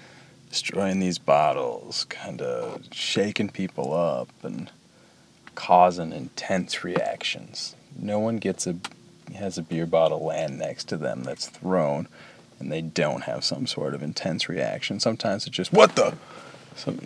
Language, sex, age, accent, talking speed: English, male, 30-49, American, 145 wpm